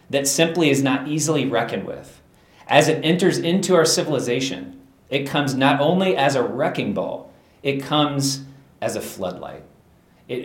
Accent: American